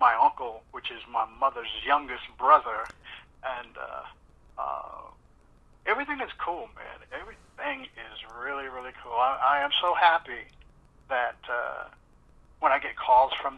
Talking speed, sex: 140 wpm, male